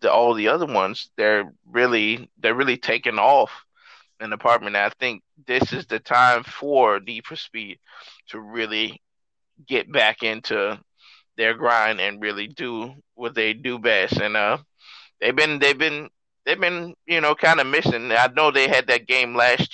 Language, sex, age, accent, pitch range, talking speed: English, male, 20-39, American, 115-145 Hz, 170 wpm